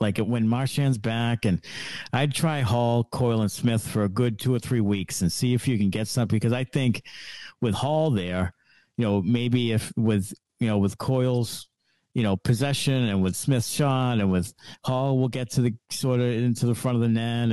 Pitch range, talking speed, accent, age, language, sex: 100-130 Hz, 220 wpm, American, 50-69, English, male